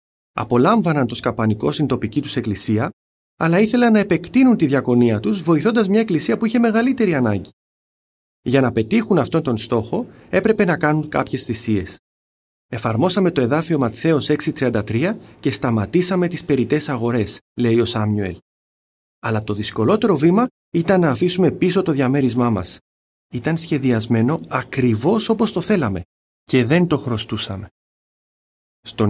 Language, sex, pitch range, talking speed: Greek, male, 110-170 Hz, 140 wpm